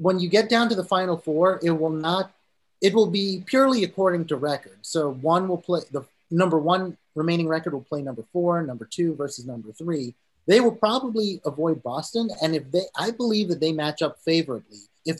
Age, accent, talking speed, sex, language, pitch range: 30-49, American, 205 wpm, male, English, 135-185 Hz